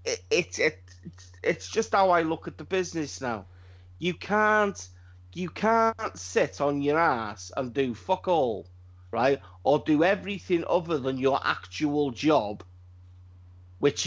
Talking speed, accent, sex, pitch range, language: 145 wpm, British, male, 90-145 Hz, English